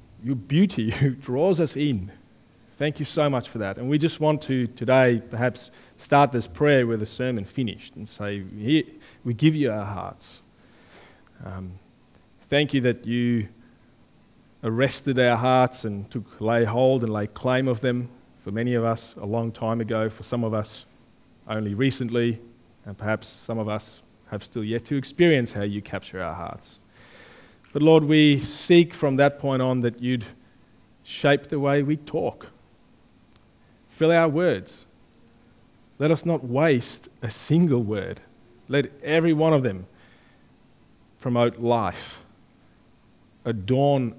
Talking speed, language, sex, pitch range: 150 wpm, English, male, 110-135 Hz